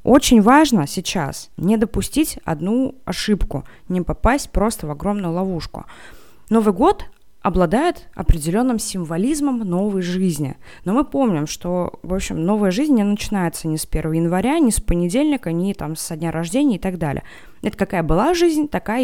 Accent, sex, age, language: native, female, 20-39, Russian